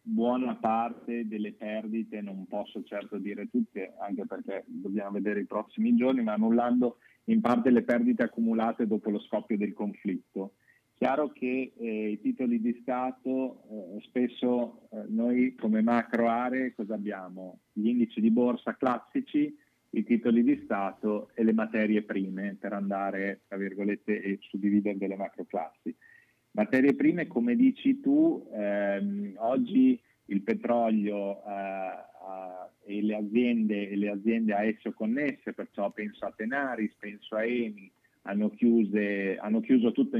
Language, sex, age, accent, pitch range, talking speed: Italian, male, 30-49, native, 105-120 Hz, 145 wpm